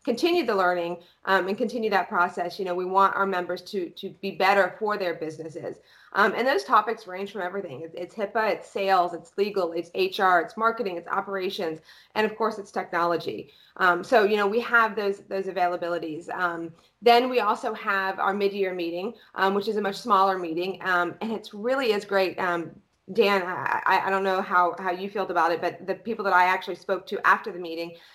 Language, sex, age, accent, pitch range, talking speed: English, female, 30-49, American, 180-205 Hz, 210 wpm